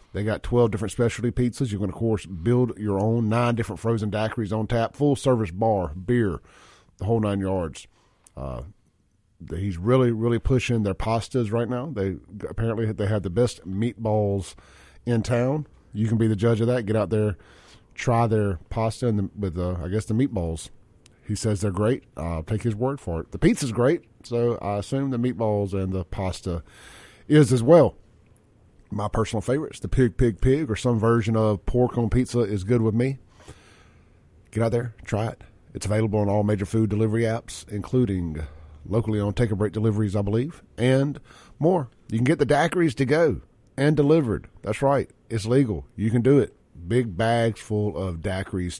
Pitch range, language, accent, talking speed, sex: 100-120 Hz, English, American, 190 wpm, male